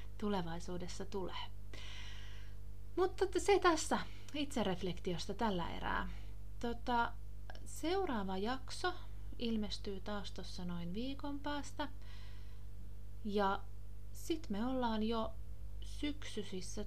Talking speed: 80 wpm